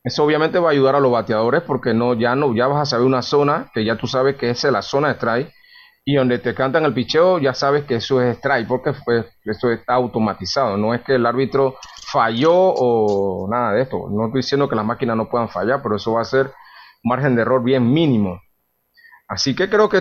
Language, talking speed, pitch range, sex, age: Spanish, 235 wpm, 115-150 Hz, male, 30-49